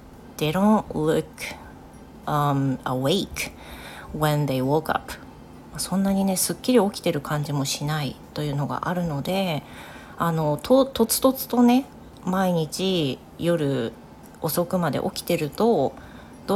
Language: Japanese